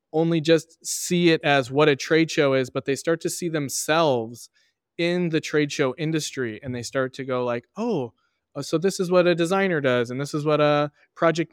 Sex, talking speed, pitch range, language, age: male, 215 wpm, 130-160 Hz, English, 20-39